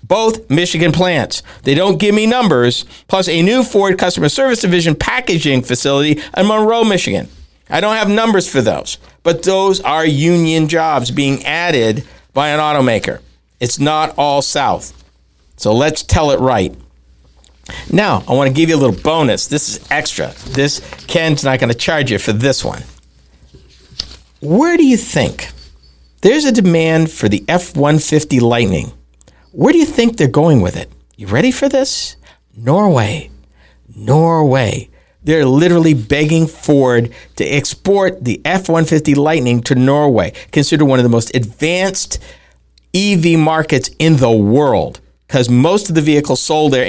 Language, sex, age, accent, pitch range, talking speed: English, male, 50-69, American, 110-170 Hz, 155 wpm